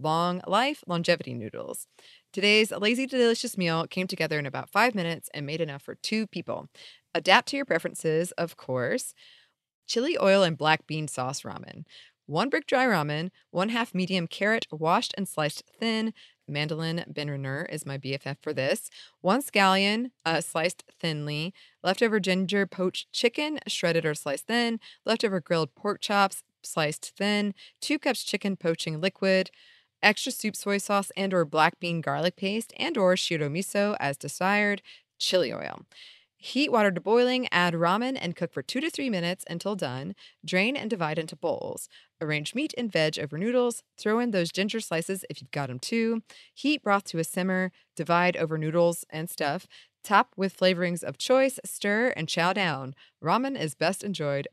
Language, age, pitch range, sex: English, 20-39, 160-215 Hz, female